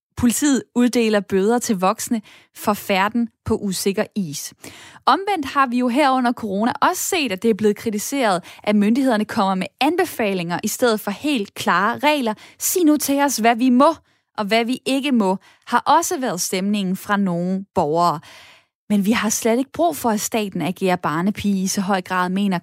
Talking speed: 185 wpm